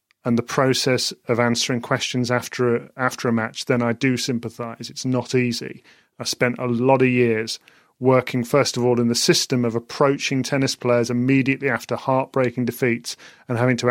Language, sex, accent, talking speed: English, male, British, 180 wpm